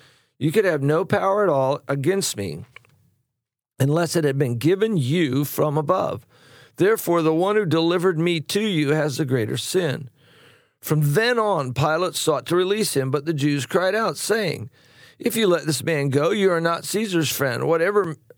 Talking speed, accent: 180 wpm, American